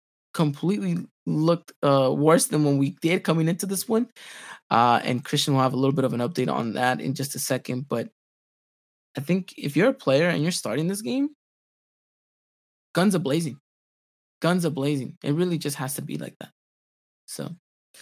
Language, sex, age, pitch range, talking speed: English, male, 20-39, 145-185 Hz, 185 wpm